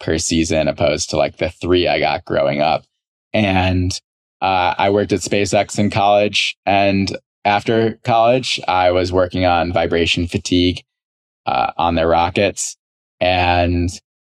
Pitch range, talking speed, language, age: 85-100 Hz, 140 wpm, English, 20-39